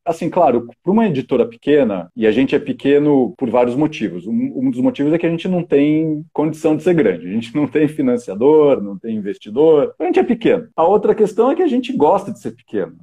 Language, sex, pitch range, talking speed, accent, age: Portuguese, male, 120-185 Hz, 235 wpm, Brazilian, 40-59